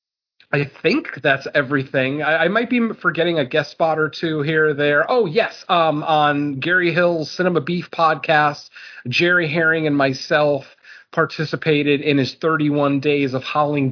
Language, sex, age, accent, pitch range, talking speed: English, male, 30-49, American, 135-165 Hz, 160 wpm